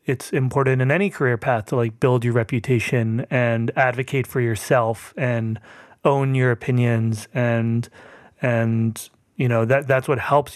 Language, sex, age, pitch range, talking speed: English, male, 30-49, 120-140 Hz, 155 wpm